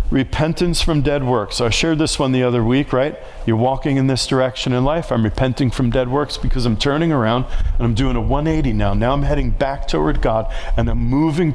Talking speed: 230 wpm